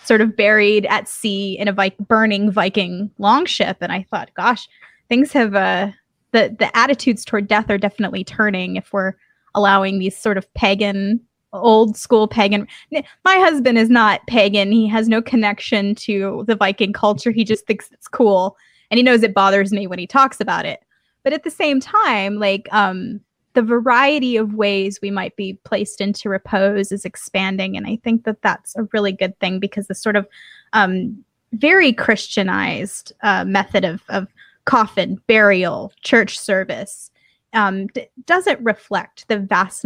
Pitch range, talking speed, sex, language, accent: 195-235 Hz, 170 wpm, female, English, American